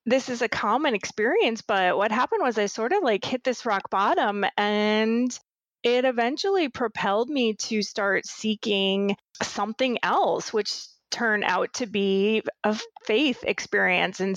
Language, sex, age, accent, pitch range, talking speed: English, female, 30-49, American, 200-250 Hz, 150 wpm